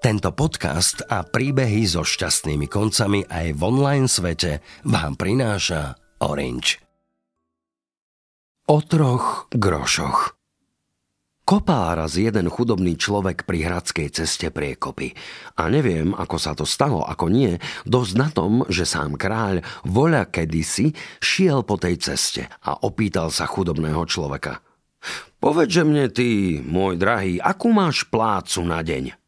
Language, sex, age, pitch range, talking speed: Slovak, male, 50-69, 85-130 Hz, 125 wpm